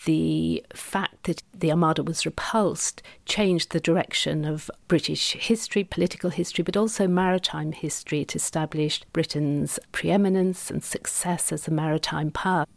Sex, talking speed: female, 135 wpm